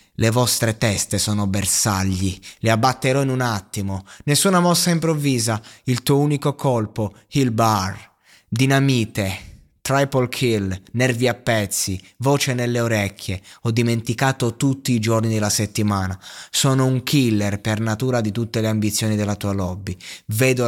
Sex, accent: male, native